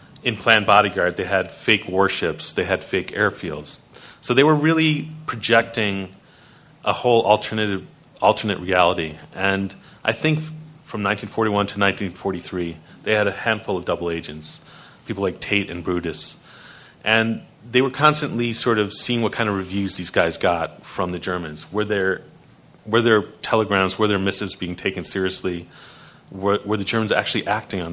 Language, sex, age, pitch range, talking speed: English, male, 30-49, 90-115 Hz, 160 wpm